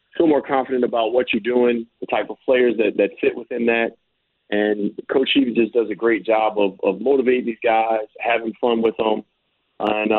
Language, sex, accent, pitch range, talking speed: English, male, American, 105-125 Hz, 200 wpm